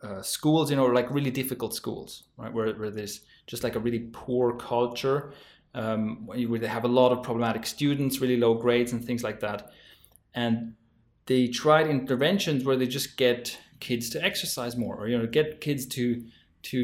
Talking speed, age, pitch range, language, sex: 190 wpm, 20-39, 120-145 Hz, English, male